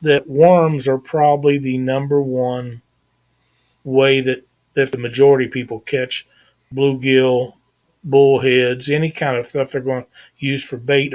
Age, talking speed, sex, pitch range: 40-59, 145 wpm, male, 130-155 Hz